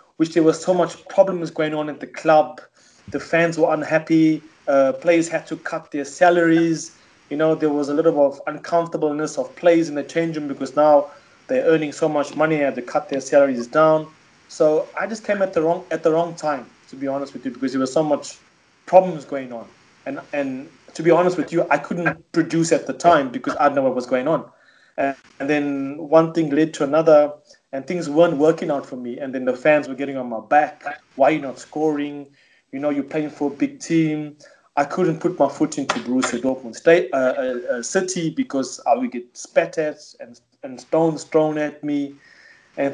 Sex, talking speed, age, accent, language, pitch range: male, 220 wpm, 30-49, South African, English, 145-175 Hz